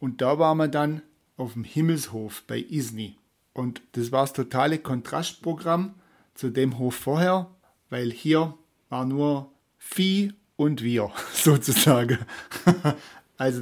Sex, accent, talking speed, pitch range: male, German, 130 wpm, 125-165 Hz